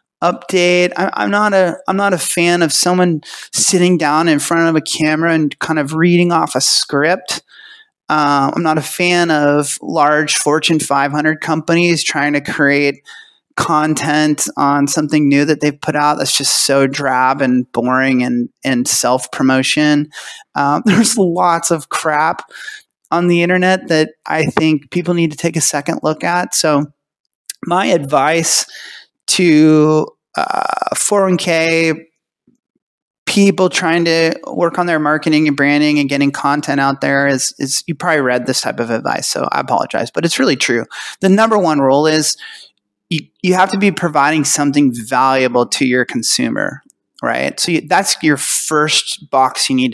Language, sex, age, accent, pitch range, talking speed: English, male, 30-49, American, 140-170 Hz, 155 wpm